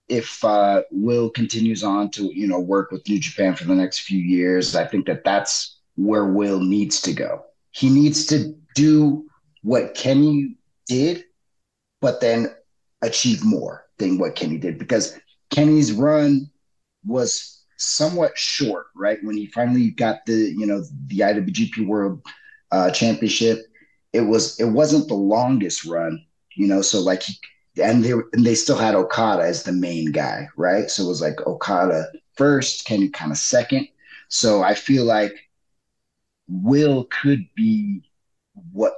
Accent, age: American, 30-49